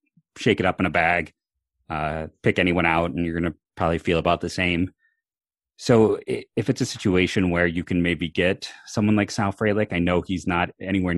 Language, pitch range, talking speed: English, 85-105 Hz, 205 wpm